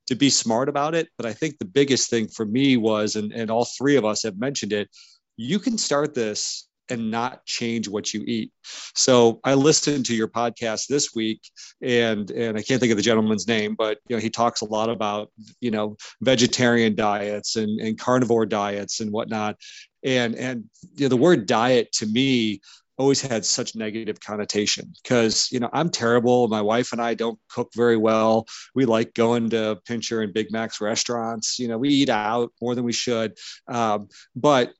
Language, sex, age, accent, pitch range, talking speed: English, male, 40-59, American, 110-125 Hz, 195 wpm